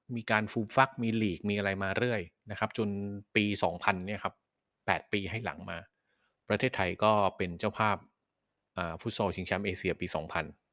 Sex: male